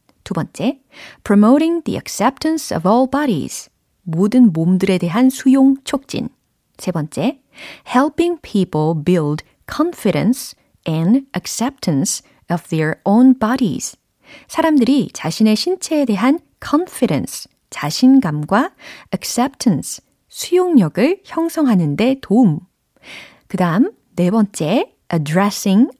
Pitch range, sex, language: 185-275 Hz, female, Korean